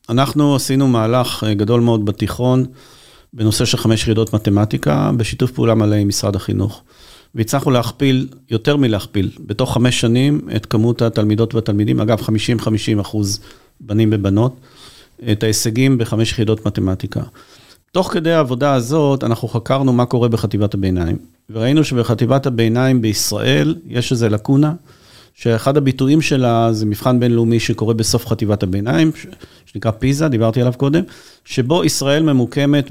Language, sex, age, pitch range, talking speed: Hebrew, male, 40-59, 110-130 Hz, 135 wpm